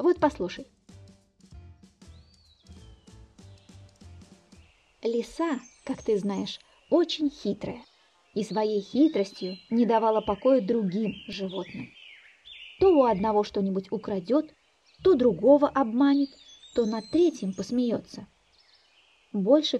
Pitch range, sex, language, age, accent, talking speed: 200-280 Hz, female, Russian, 20-39, native, 90 wpm